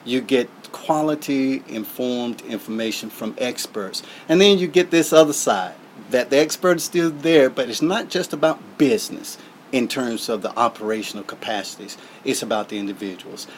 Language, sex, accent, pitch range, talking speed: English, male, American, 110-125 Hz, 160 wpm